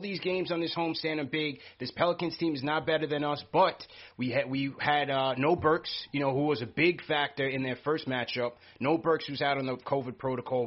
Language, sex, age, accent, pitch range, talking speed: English, male, 30-49, American, 130-160 Hz, 240 wpm